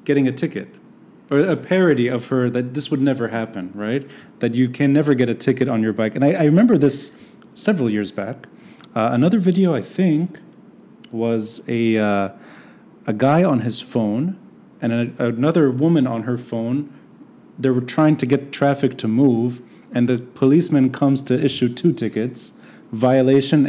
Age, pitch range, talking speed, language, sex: 30-49, 110-145 Hz, 170 wpm, English, male